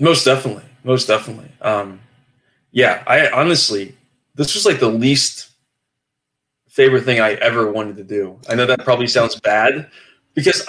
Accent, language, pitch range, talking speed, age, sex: American, English, 115-140 Hz, 150 wpm, 20-39, male